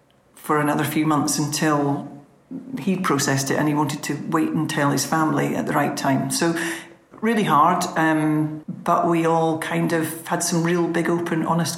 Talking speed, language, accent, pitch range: 185 wpm, English, British, 155-170 Hz